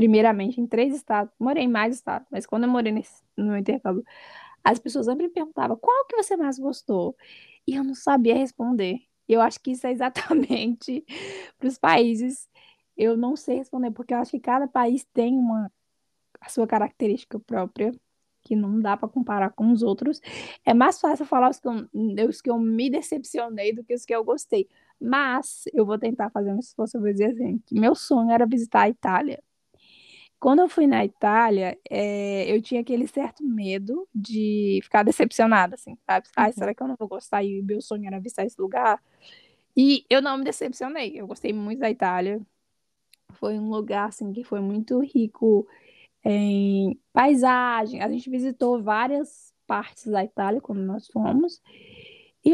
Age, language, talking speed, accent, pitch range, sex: 10-29, Portuguese, 185 wpm, Brazilian, 215-270 Hz, female